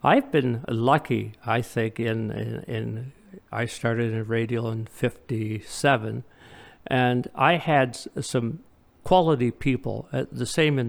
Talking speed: 145 wpm